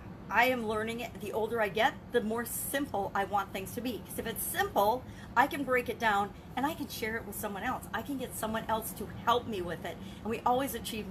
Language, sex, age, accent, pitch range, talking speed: English, female, 40-59, American, 195-250 Hz, 255 wpm